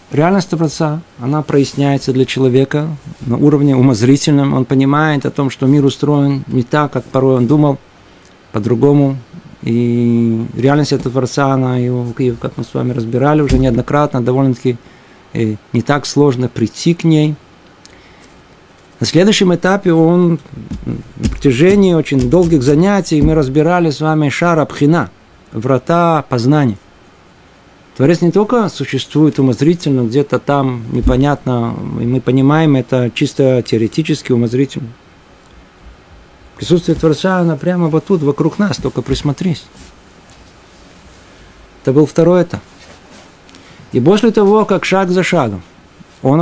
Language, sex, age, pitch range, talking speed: Russian, male, 50-69, 120-165 Hz, 125 wpm